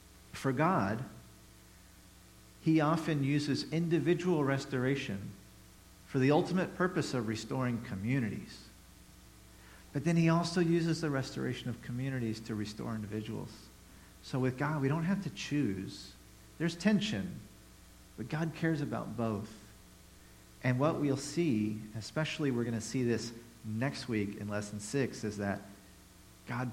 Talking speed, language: 130 wpm, English